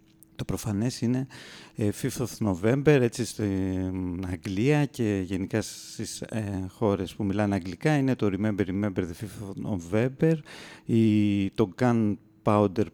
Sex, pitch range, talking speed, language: male, 100-130 Hz, 125 wpm, English